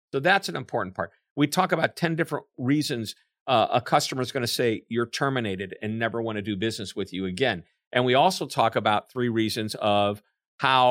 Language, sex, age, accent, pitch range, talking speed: English, male, 50-69, American, 110-145 Hz, 210 wpm